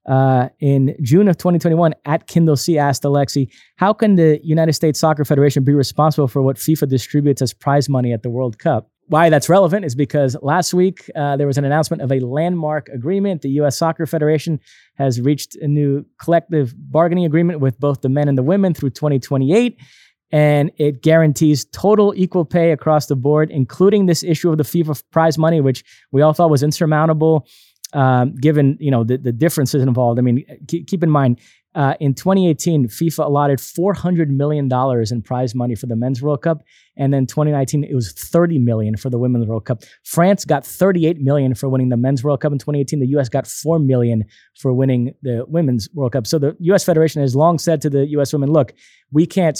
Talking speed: 200 wpm